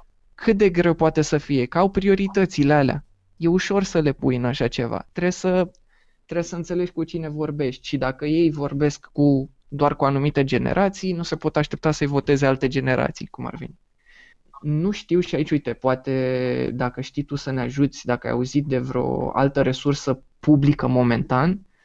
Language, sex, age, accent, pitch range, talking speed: Romanian, male, 20-39, native, 125-155 Hz, 180 wpm